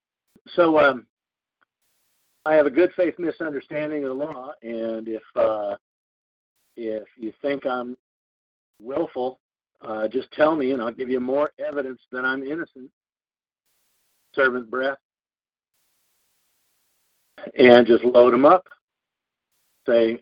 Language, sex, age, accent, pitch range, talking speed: English, male, 50-69, American, 125-150 Hz, 120 wpm